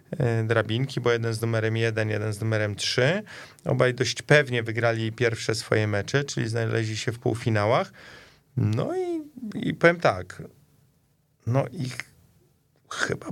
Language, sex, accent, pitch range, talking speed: Polish, male, native, 115-135 Hz, 140 wpm